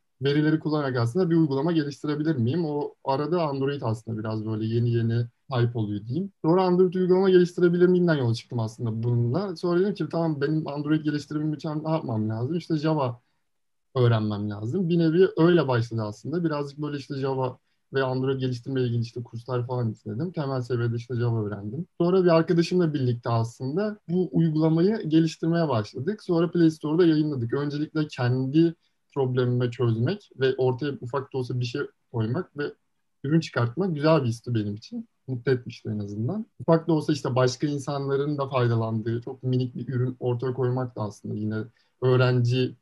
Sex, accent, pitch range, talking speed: male, native, 120-160 Hz, 165 wpm